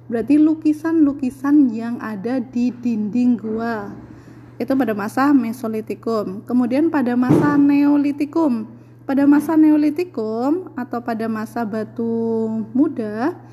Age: 20-39